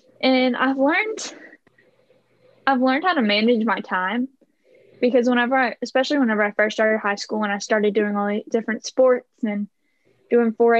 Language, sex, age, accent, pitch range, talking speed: English, female, 10-29, American, 215-275 Hz, 170 wpm